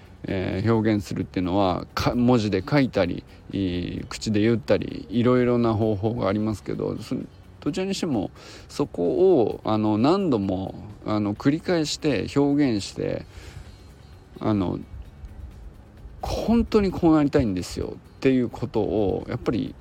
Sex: male